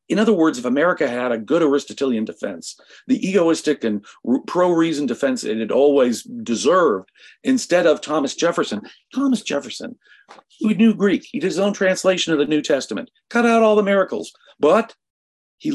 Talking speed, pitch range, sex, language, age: 170 wpm, 140-230 Hz, male, English, 50-69